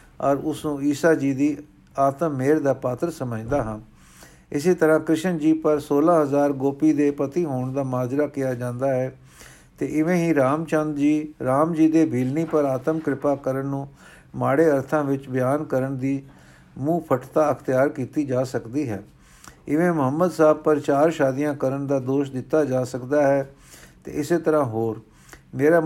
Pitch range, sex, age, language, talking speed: 130-155 Hz, male, 50-69, Punjabi, 165 wpm